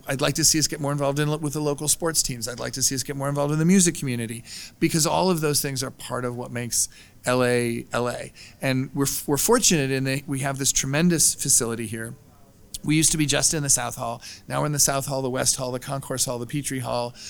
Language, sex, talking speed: English, male, 255 wpm